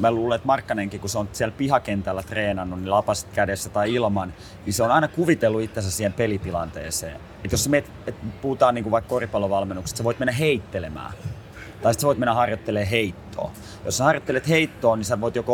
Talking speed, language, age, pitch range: 195 wpm, Finnish, 30-49, 100-125 Hz